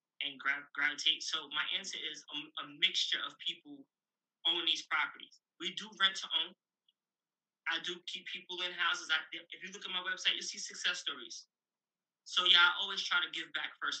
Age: 20-39